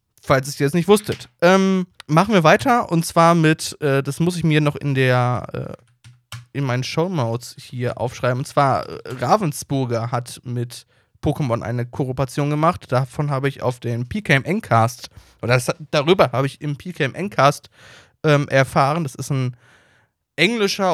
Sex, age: male, 20-39